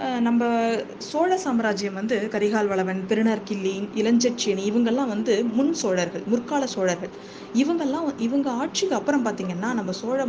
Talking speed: 125 wpm